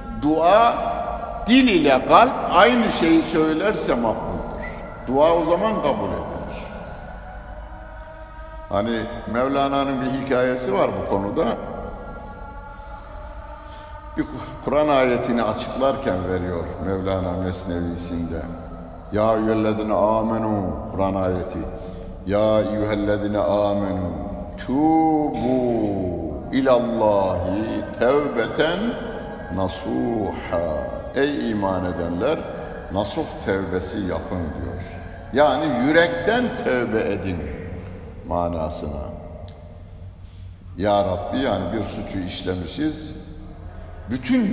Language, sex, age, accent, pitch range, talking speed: Turkish, male, 60-79, native, 90-130 Hz, 80 wpm